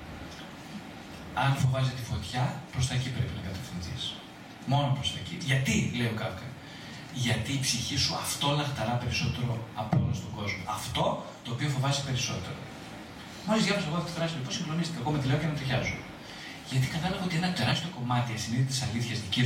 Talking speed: 185 wpm